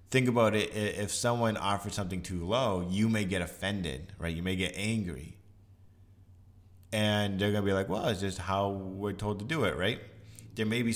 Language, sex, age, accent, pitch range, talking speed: English, male, 20-39, American, 95-110 Hz, 205 wpm